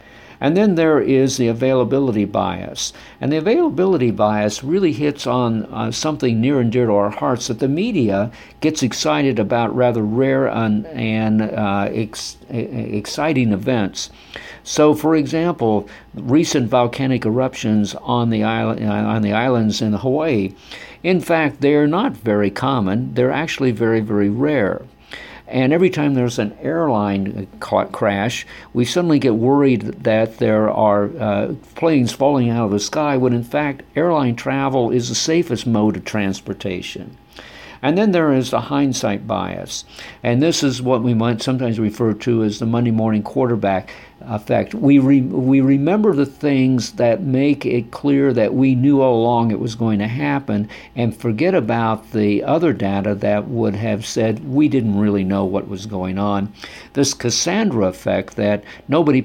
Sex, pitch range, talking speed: male, 105-135 Hz, 155 wpm